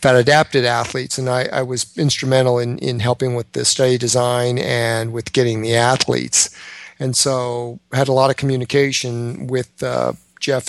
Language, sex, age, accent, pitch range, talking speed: English, male, 50-69, American, 120-140 Hz, 170 wpm